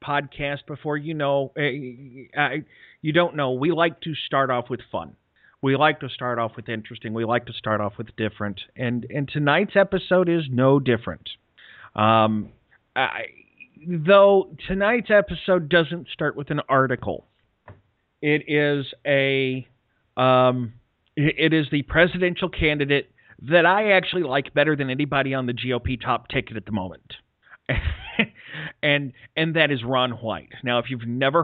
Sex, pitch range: male, 120-150 Hz